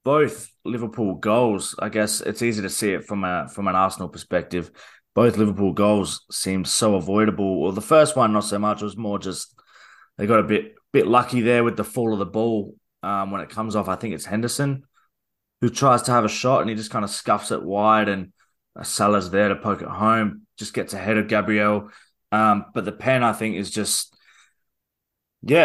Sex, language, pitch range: male, English, 105-120 Hz